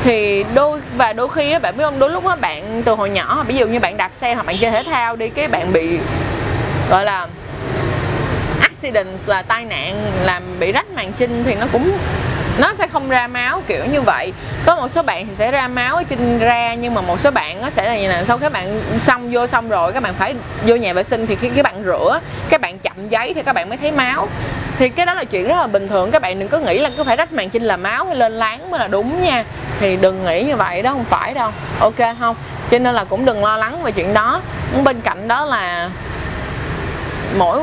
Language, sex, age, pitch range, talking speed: Vietnamese, female, 20-39, 215-285 Hz, 255 wpm